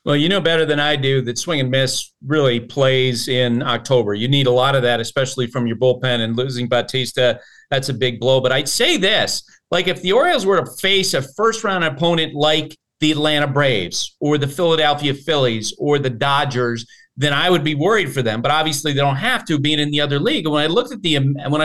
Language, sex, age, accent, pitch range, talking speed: English, male, 40-59, American, 130-155 Hz, 225 wpm